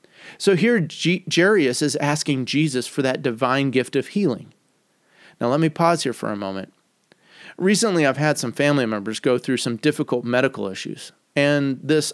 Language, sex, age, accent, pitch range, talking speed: English, male, 30-49, American, 120-165 Hz, 175 wpm